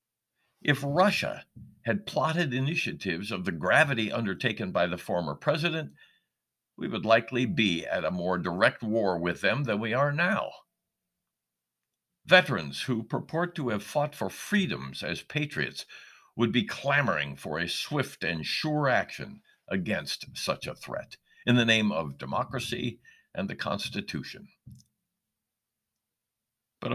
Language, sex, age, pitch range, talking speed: English, male, 60-79, 100-145 Hz, 135 wpm